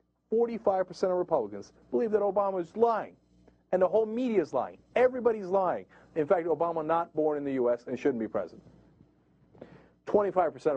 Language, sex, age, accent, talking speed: English, male, 40-59, American, 160 wpm